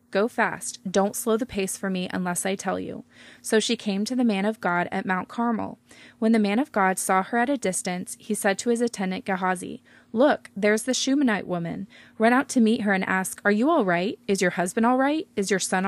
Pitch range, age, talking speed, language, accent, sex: 190-230 Hz, 20-39, 240 wpm, English, American, female